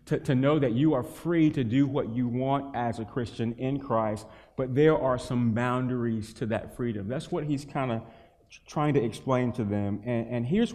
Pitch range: 120-150 Hz